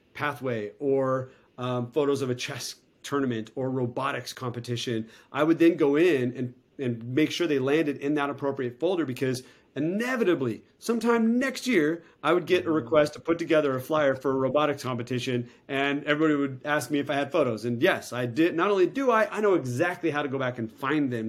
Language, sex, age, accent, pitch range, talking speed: English, male, 40-59, American, 125-145 Hz, 205 wpm